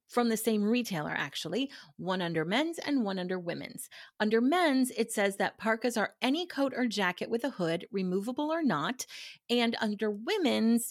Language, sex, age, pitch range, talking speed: English, female, 30-49, 185-250 Hz, 175 wpm